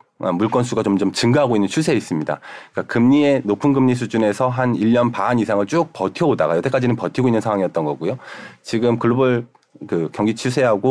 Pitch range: 100-135 Hz